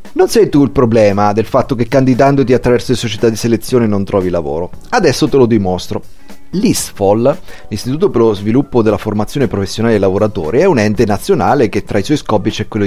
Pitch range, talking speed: 100-125 Hz, 195 wpm